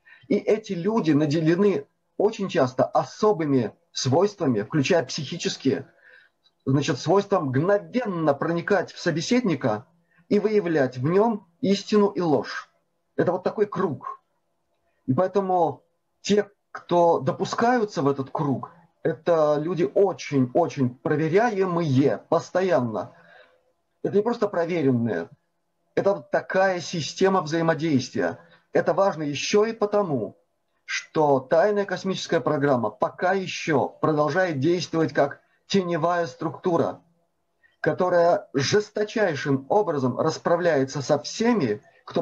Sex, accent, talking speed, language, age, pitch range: male, native, 100 wpm, Russian, 30-49, 150-200 Hz